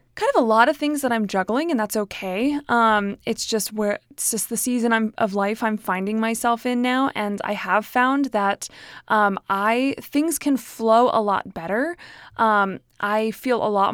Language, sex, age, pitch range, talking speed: English, female, 20-39, 205-245 Hz, 200 wpm